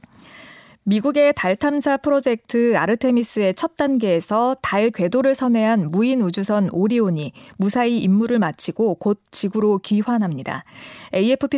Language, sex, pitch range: Korean, female, 190-260 Hz